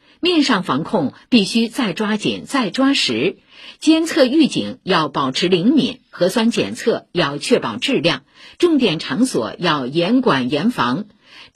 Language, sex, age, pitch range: Chinese, female, 50-69, 210-275 Hz